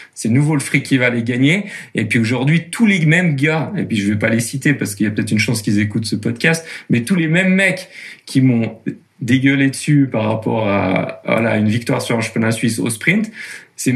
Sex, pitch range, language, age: male, 110-150 Hz, French, 40-59